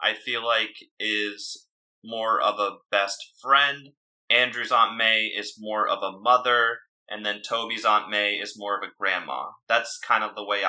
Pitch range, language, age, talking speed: 105-125 Hz, English, 20-39, 180 wpm